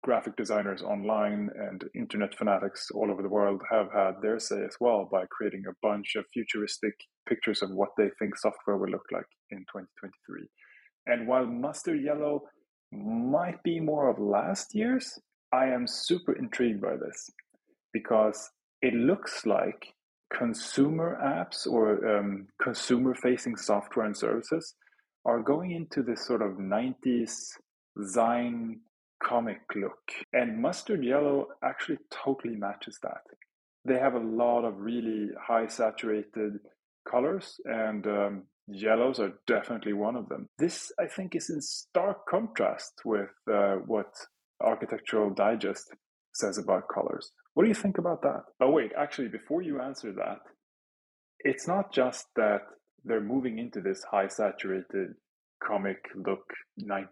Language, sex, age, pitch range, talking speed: English, male, 30-49, 105-135 Hz, 145 wpm